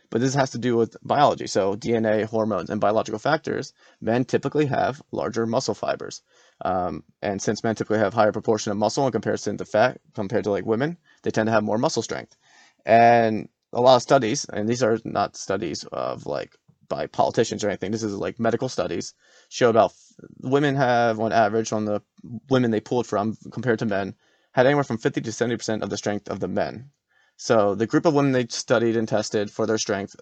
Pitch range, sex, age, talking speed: 105-120 Hz, male, 30-49, 210 wpm